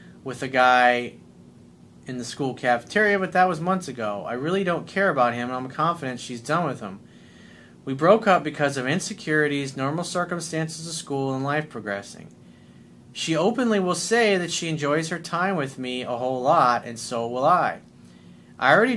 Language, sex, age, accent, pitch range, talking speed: English, male, 40-59, American, 125-195 Hz, 185 wpm